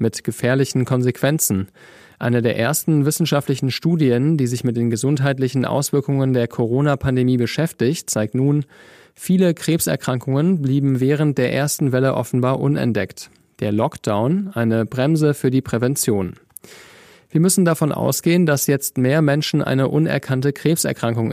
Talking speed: 130 wpm